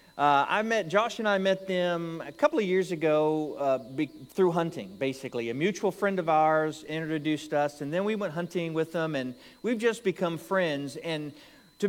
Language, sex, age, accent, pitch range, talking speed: English, male, 40-59, American, 145-205 Hz, 195 wpm